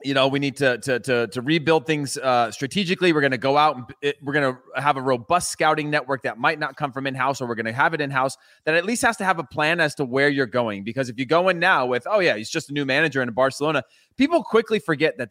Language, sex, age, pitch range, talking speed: English, male, 30-49, 130-165 Hz, 285 wpm